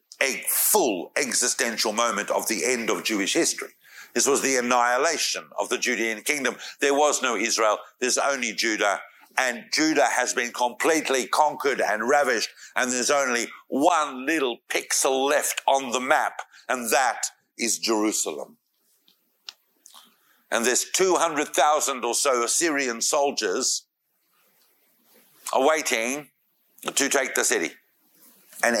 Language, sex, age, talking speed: English, male, 60-79, 125 wpm